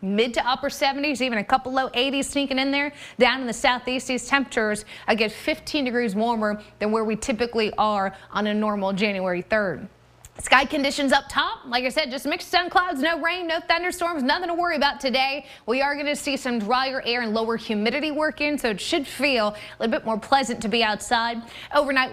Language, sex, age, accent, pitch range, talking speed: English, female, 20-39, American, 205-275 Hz, 210 wpm